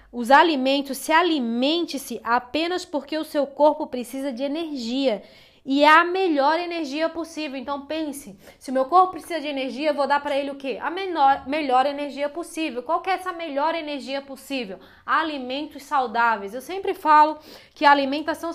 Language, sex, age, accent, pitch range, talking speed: Portuguese, female, 20-39, Brazilian, 255-305 Hz, 175 wpm